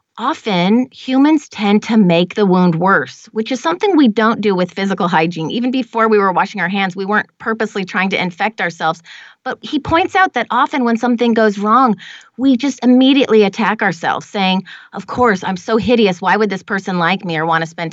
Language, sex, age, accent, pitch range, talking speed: English, female, 30-49, American, 190-240 Hz, 210 wpm